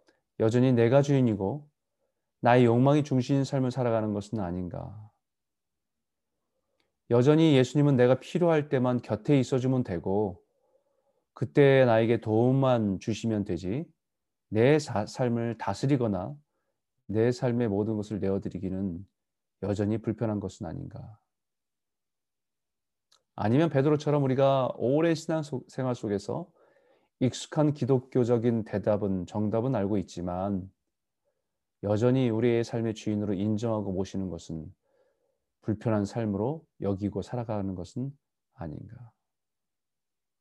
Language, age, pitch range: Korean, 30-49, 105-135 Hz